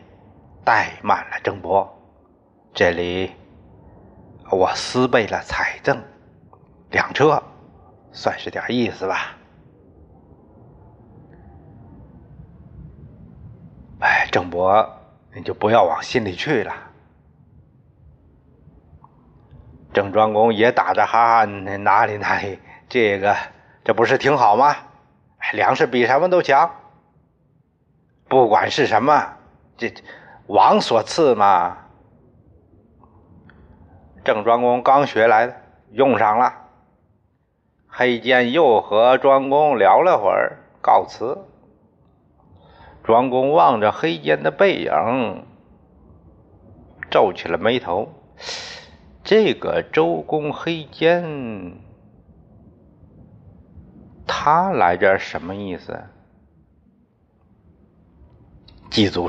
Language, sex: Chinese, male